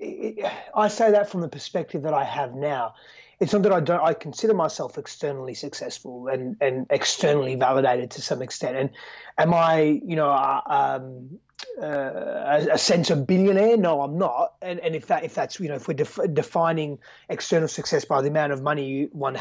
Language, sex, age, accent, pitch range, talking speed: English, male, 30-49, Australian, 150-190 Hz, 195 wpm